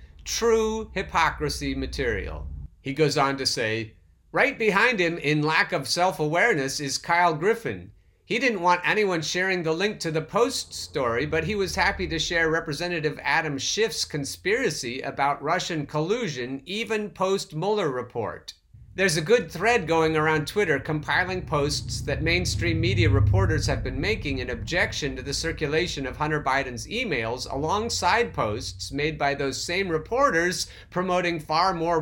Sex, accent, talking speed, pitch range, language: male, American, 150 wpm, 135-180 Hz, English